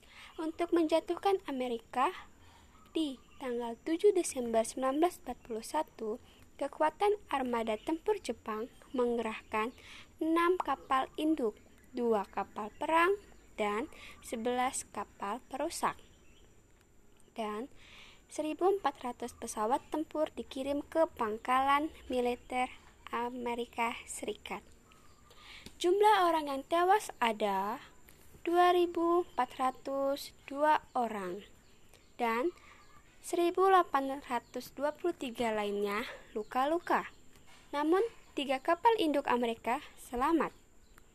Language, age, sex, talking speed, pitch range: Indonesian, 20-39, female, 75 wpm, 230-325 Hz